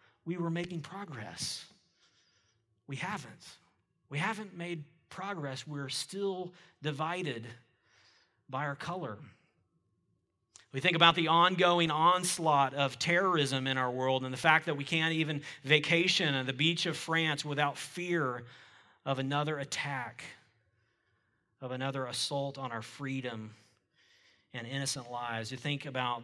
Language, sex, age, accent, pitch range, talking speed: English, male, 40-59, American, 130-160 Hz, 130 wpm